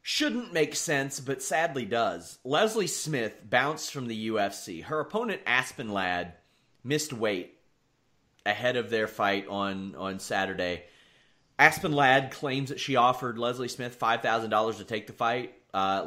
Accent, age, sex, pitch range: American, 30-49, male, 115-150 Hz